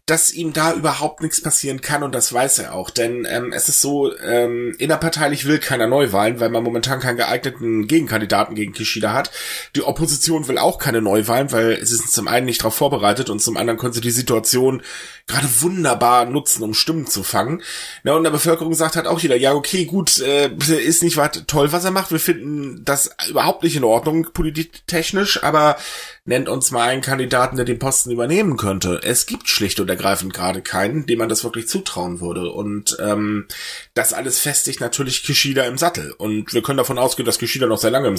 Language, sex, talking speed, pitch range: German, male, 205 wpm, 110-155 Hz